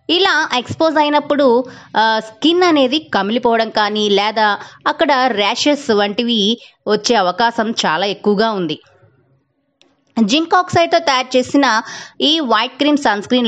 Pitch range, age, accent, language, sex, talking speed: 200-270 Hz, 20-39, native, Telugu, female, 110 wpm